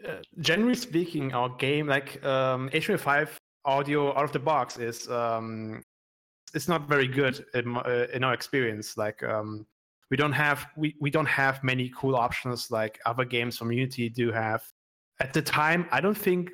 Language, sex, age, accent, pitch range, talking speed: English, male, 30-49, German, 120-145 Hz, 180 wpm